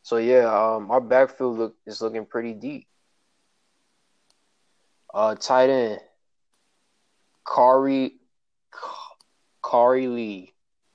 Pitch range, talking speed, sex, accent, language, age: 110-125 Hz, 90 wpm, male, American, English, 20-39